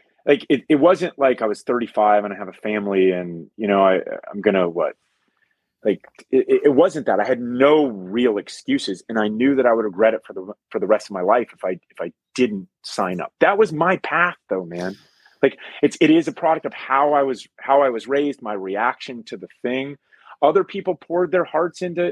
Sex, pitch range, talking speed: male, 110-170 Hz, 230 wpm